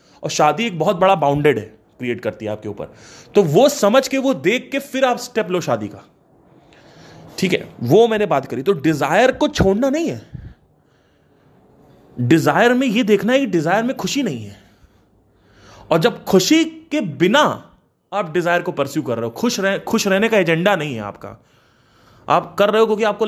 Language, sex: Hindi, male